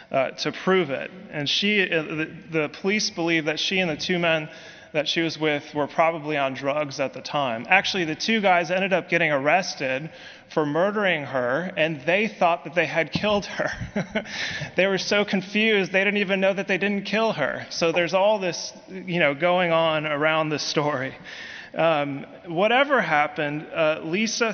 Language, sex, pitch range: English, male, 150-190 Hz